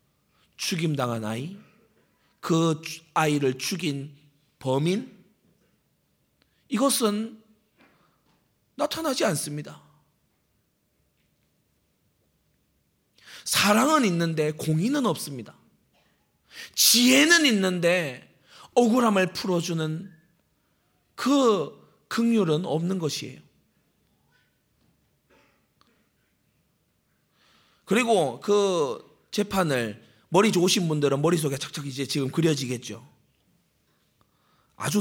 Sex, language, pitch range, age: male, Korean, 130-190 Hz, 40-59